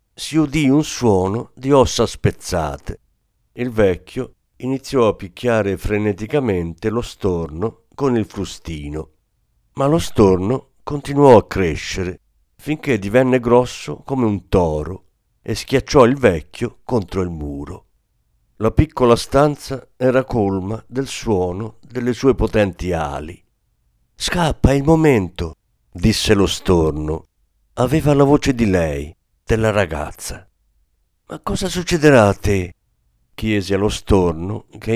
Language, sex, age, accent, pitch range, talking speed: Italian, male, 50-69, native, 90-125 Hz, 120 wpm